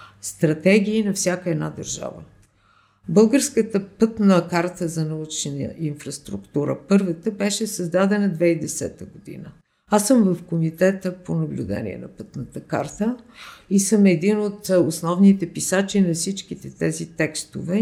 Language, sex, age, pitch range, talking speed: Bulgarian, female, 50-69, 165-205 Hz, 120 wpm